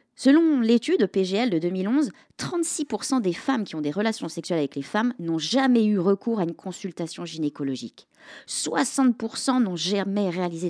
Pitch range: 165-260 Hz